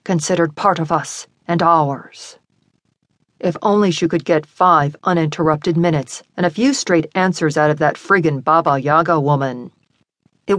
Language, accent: English, American